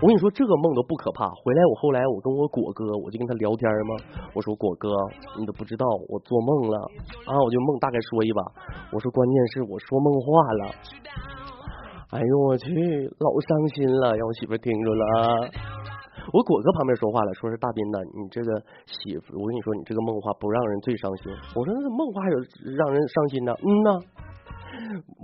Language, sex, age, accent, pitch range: Chinese, male, 30-49, native, 110-150 Hz